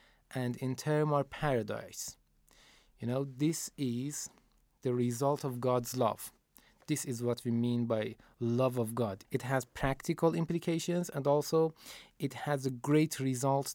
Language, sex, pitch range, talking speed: Persian, male, 125-150 Hz, 150 wpm